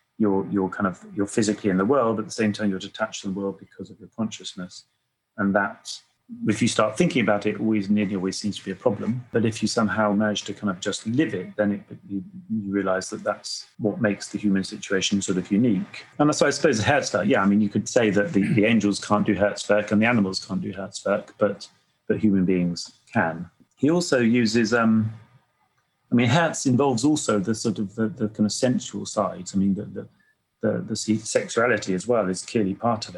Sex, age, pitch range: male, 30-49, 100-115 Hz